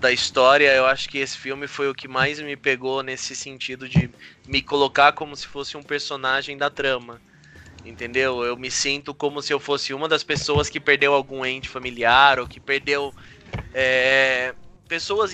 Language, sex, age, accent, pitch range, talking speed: Portuguese, male, 20-39, Brazilian, 130-155 Hz, 180 wpm